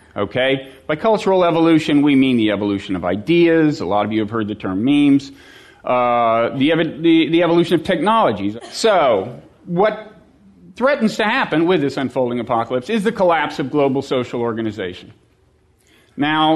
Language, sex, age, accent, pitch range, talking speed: English, male, 40-59, American, 135-190 Hz, 160 wpm